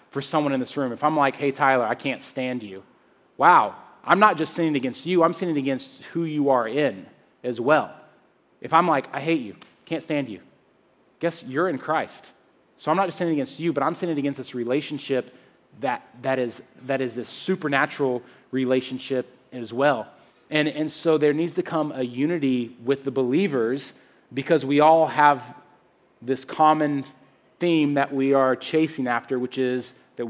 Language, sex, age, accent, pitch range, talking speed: English, male, 30-49, American, 130-160 Hz, 185 wpm